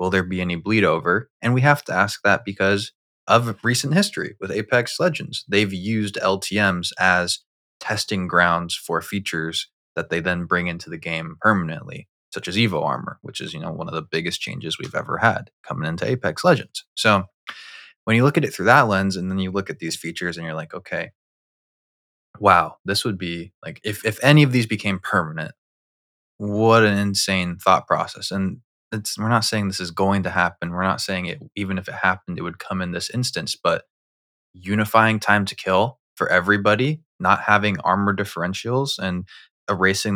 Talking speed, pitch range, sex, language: 190 wpm, 90-110 Hz, male, English